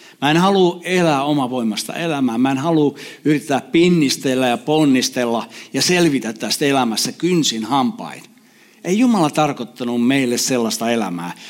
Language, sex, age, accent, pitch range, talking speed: Finnish, male, 60-79, native, 125-185 Hz, 135 wpm